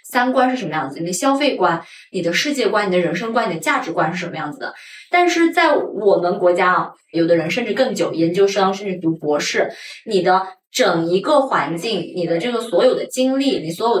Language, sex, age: Chinese, female, 20-39